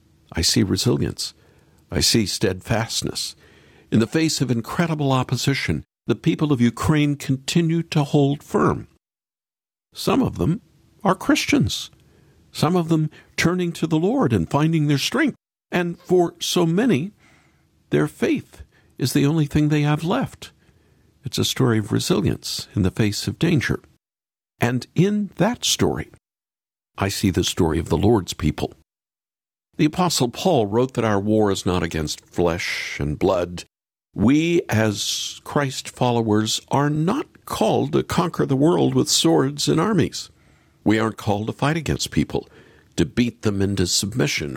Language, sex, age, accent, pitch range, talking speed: English, male, 60-79, American, 105-155 Hz, 150 wpm